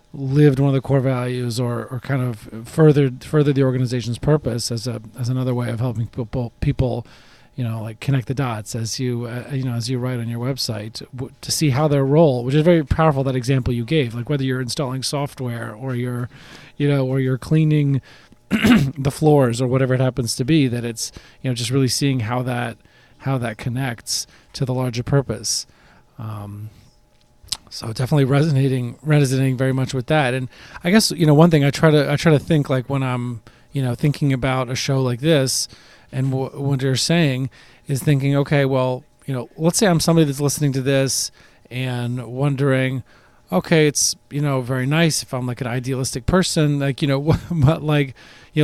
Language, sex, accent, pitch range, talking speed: English, male, American, 125-150 Hz, 200 wpm